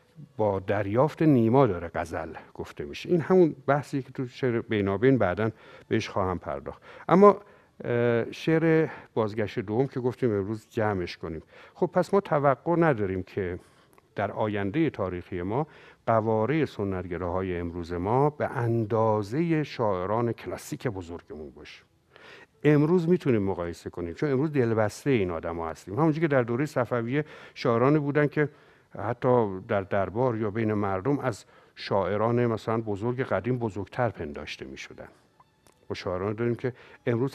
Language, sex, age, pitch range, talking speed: Persian, male, 60-79, 105-140 Hz, 140 wpm